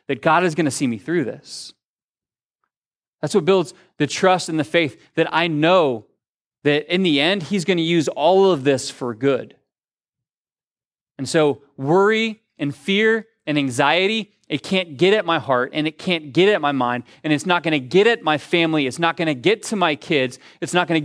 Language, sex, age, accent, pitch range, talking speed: English, male, 30-49, American, 145-185 Hz, 210 wpm